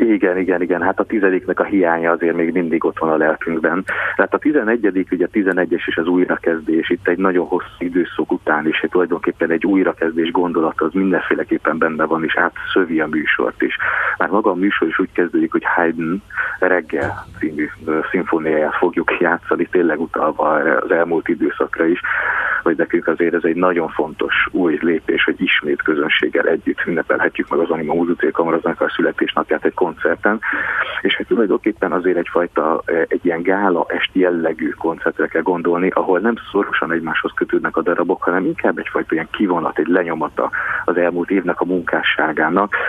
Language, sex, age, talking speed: Hungarian, male, 30-49, 165 wpm